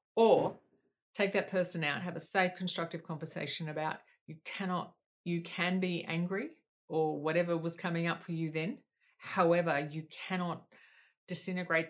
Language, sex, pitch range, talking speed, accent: English, female, 160-185 Hz, 145 wpm, Australian